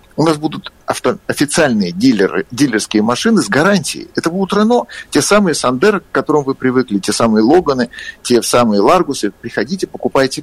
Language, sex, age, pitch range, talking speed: Russian, male, 50-69, 120-170 Hz, 150 wpm